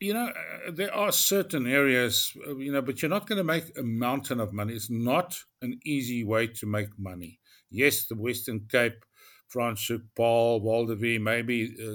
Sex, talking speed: male, 180 wpm